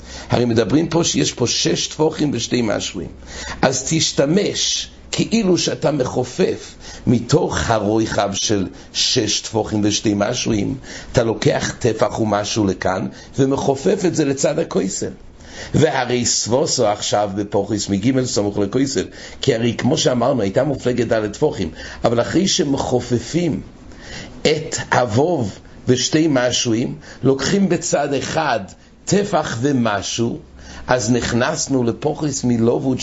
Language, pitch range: English, 105-145 Hz